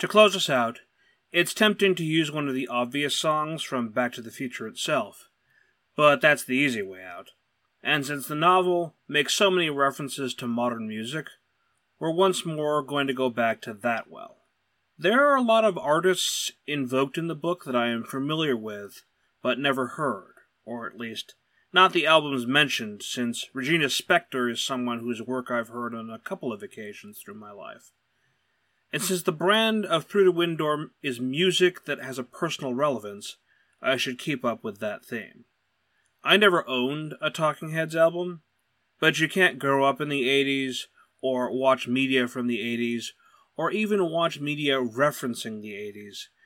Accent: American